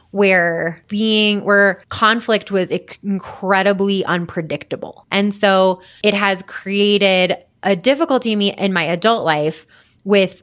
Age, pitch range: 20-39, 175-215 Hz